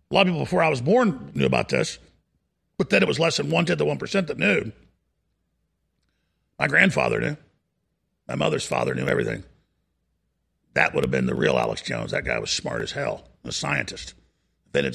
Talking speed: 190 wpm